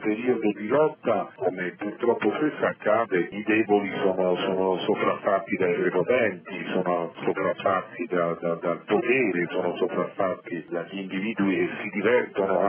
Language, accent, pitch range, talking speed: Italian, native, 95-125 Hz, 125 wpm